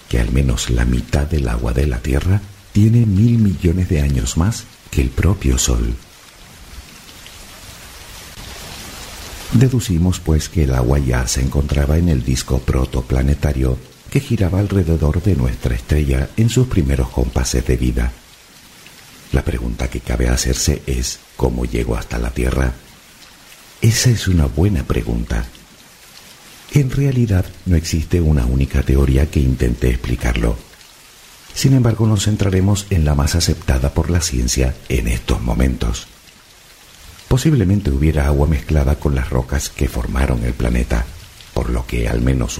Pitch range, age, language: 65-90 Hz, 50-69, Spanish